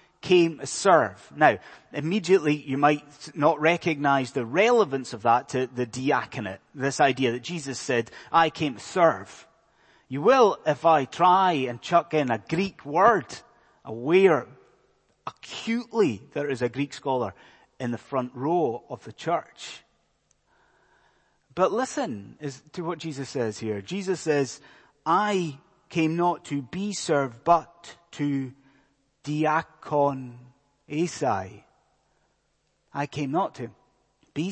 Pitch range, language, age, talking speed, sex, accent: 135-180 Hz, English, 30-49, 130 wpm, male, British